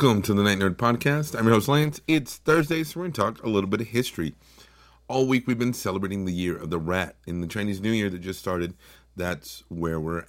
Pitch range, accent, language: 80-115 Hz, American, English